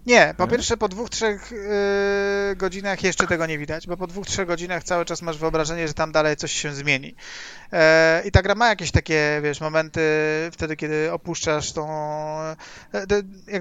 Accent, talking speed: native, 170 wpm